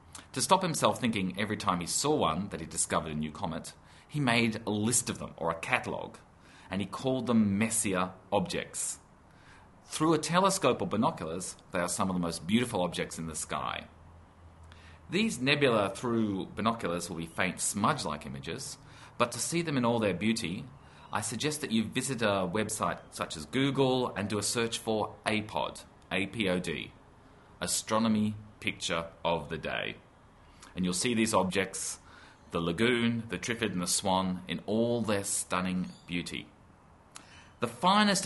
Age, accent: 30-49, Australian